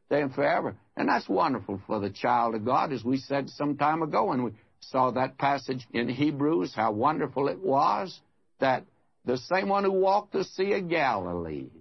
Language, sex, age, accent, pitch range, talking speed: English, male, 60-79, American, 120-165 Hz, 190 wpm